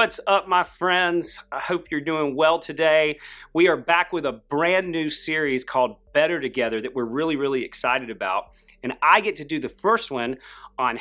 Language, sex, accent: English, male, American